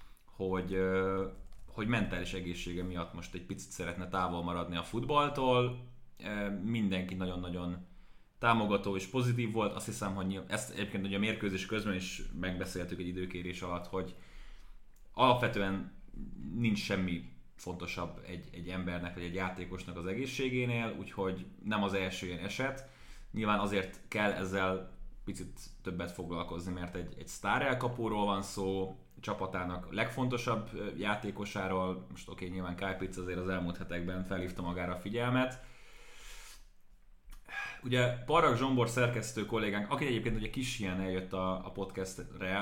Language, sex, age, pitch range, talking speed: Hungarian, male, 20-39, 90-110 Hz, 135 wpm